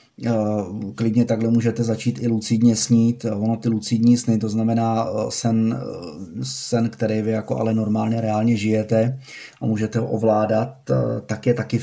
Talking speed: 140 wpm